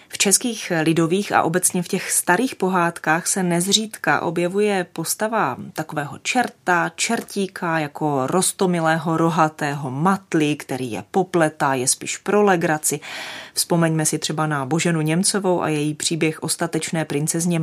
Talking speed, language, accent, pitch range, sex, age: 125 wpm, Czech, native, 155-185 Hz, female, 30-49